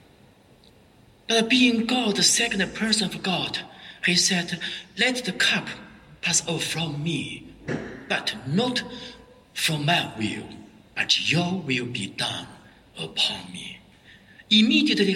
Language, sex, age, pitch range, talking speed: English, male, 60-79, 155-210 Hz, 120 wpm